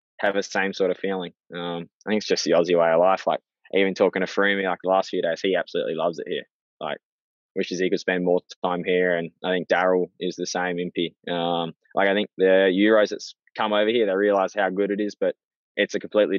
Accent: Australian